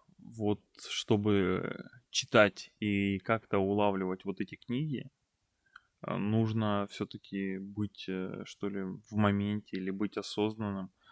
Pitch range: 95-110 Hz